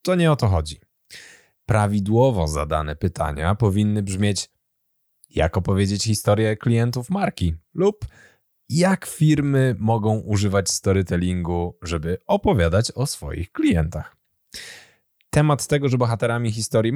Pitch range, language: 90-125 Hz, Polish